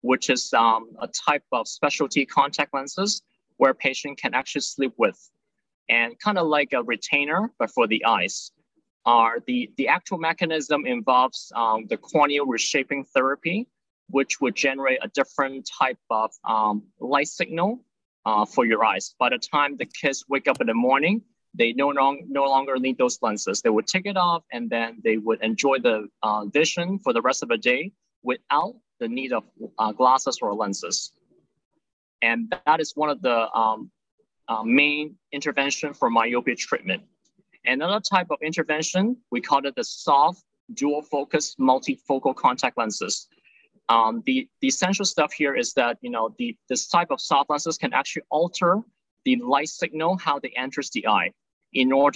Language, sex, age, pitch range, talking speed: English, male, 20-39, 130-190 Hz, 175 wpm